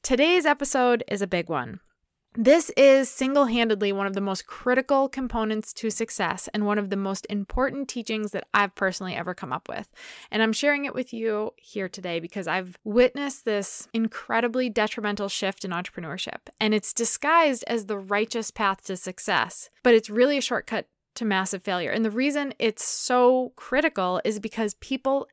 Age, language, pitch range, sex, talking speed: 20-39, English, 200-245 Hz, female, 175 wpm